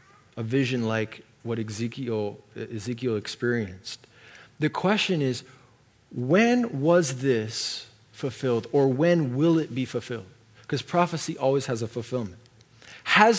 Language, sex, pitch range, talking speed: English, male, 120-165 Hz, 120 wpm